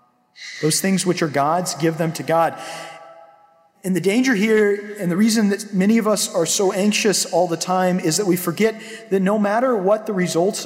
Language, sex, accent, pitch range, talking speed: English, male, American, 160-210 Hz, 205 wpm